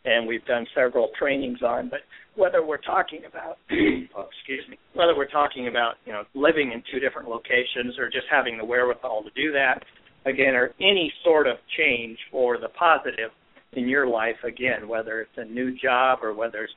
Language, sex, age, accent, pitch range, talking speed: English, male, 50-69, American, 125-160 Hz, 195 wpm